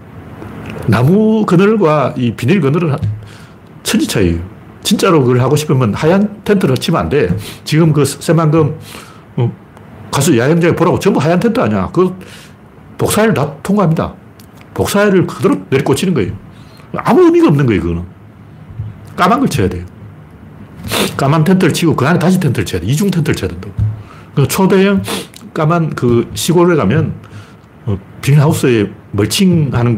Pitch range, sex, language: 105-175 Hz, male, Korean